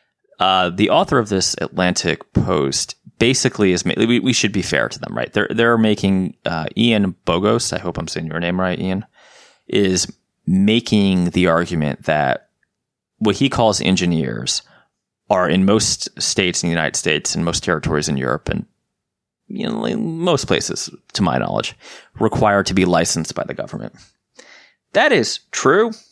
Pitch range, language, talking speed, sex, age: 85-115 Hz, English, 170 wpm, male, 20-39